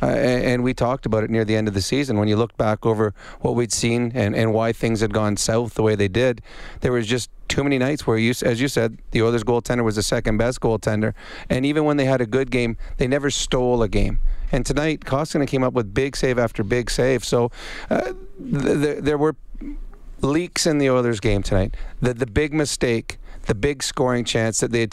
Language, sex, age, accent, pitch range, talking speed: English, male, 30-49, American, 115-140 Hz, 235 wpm